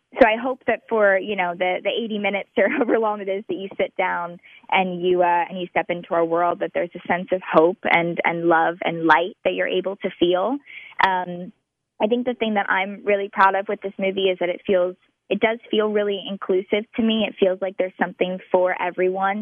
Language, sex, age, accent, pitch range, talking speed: English, female, 20-39, American, 180-210 Hz, 235 wpm